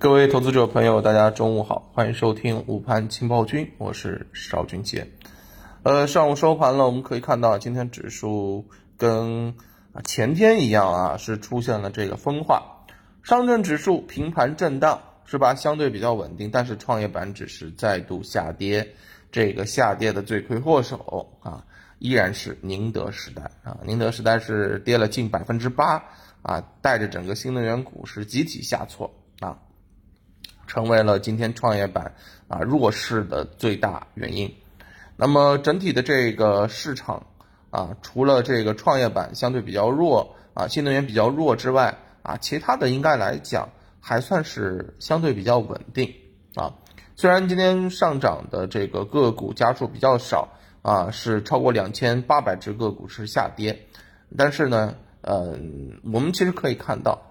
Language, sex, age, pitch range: Chinese, male, 20-39, 105-130 Hz